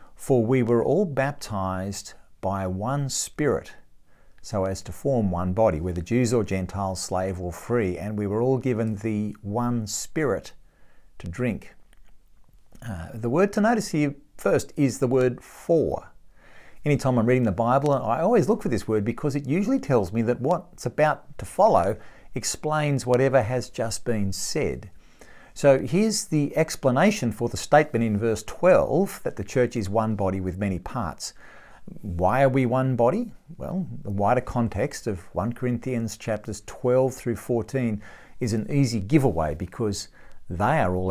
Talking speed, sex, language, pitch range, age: 165 wpm, male, English, 105-135 Hz, 50-69